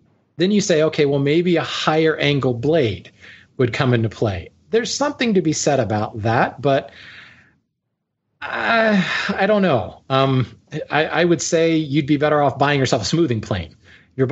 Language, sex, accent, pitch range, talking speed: English, male, American, 120-160 Hz, 170 wpm